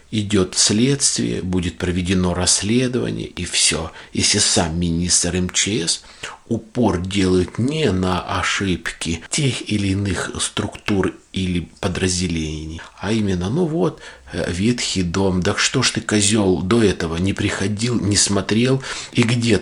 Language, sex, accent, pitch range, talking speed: Russian, male, native, 90-105 Hz, 125 wpm